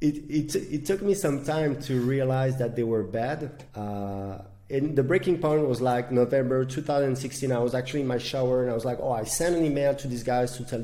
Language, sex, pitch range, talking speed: English, male, 115-135 Hz, 235 wpm